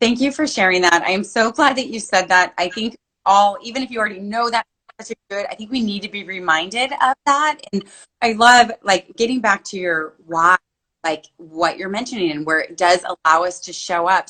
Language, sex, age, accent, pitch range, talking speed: English, female, 20-39, American, 175-235 Hz, 225 wpm